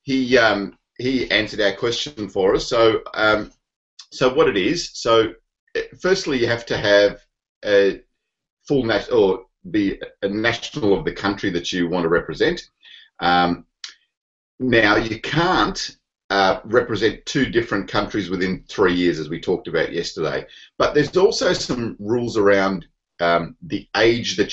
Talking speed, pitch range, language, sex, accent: 150 wpm, 95-150 Hz, English, male, Australian